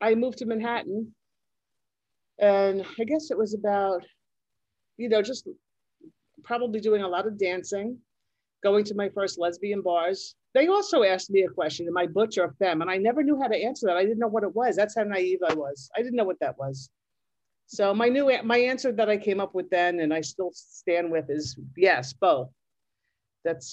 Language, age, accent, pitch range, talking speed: English, 50-69, American, 155-215 Hz, 205 wpm